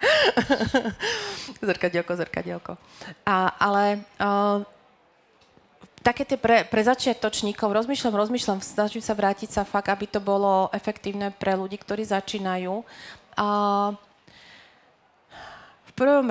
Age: 30-49